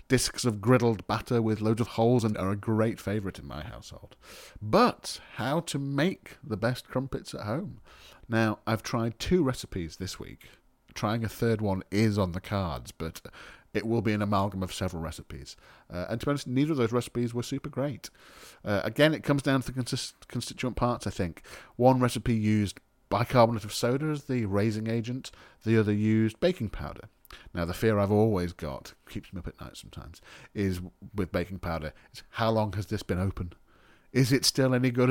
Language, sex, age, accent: English, male, 40-59, British